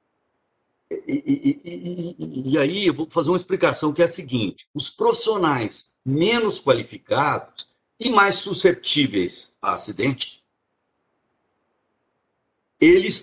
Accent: Brazilian